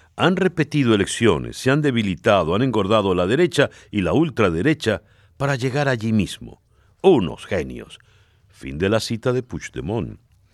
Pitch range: 95-135 Hz